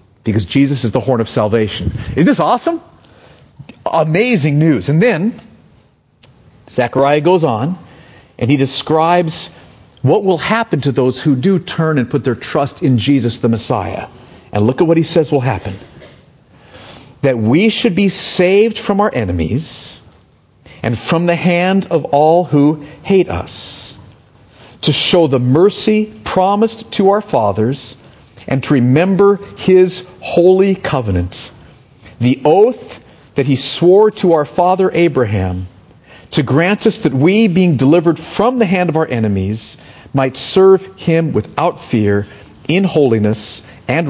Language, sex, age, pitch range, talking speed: English, male, 50-69, 120-180 Hz, 145 wpm